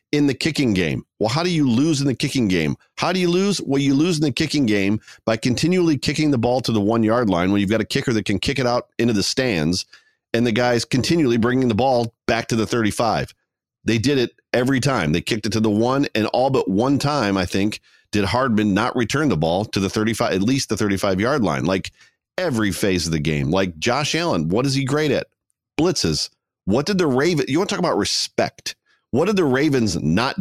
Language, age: English, 40-59